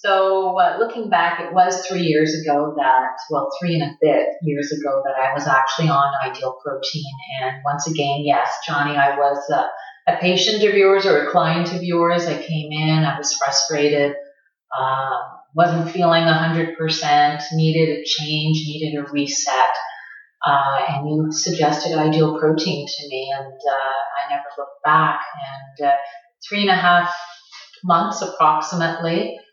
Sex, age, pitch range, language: female, 30-49, 145-165 Hz, English